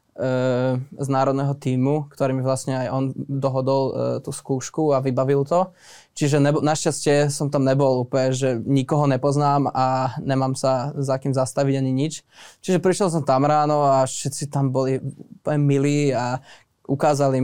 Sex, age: male, 20-39